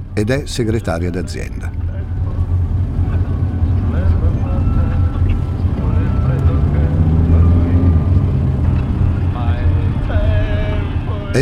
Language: Italian